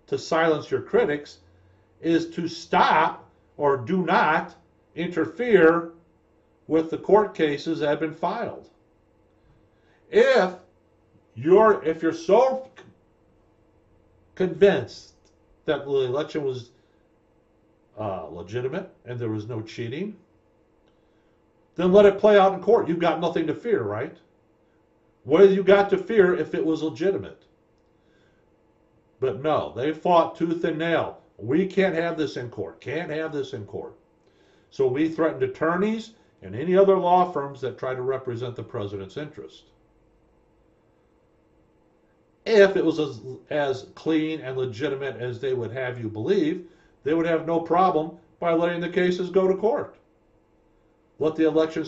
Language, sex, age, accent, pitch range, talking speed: English, male, 50-69, American, 145-190 Hz, 140 wpm